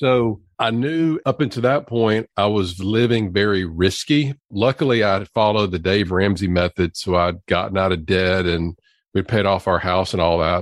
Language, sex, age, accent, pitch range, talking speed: English, male, 50-69, American, 90-105 Hz, 190 wpm